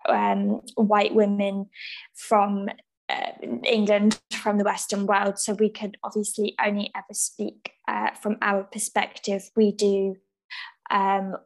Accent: British